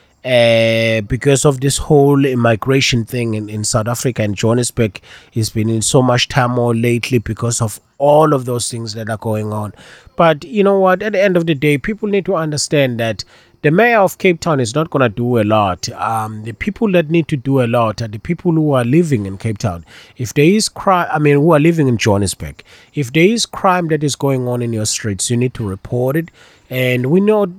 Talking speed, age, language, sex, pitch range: 230 wpm, 30-49, English, male, 115-175 Hz